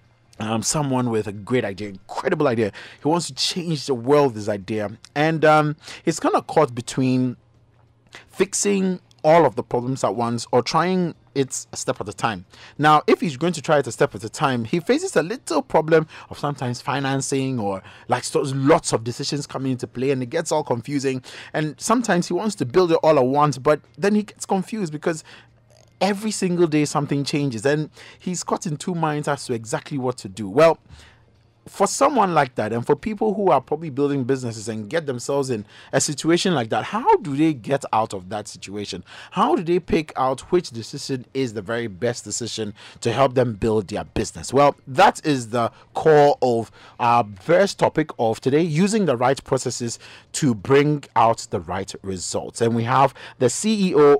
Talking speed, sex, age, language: 195 wpm, male, 30-49, English